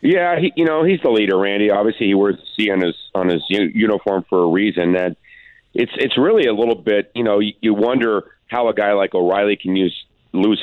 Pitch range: 100-120 Hz